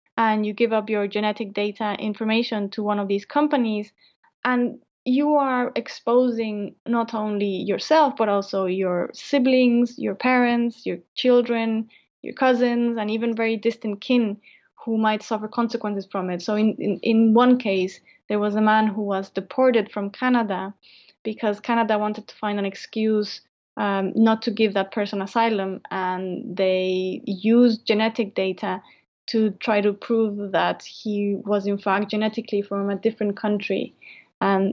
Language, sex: English, female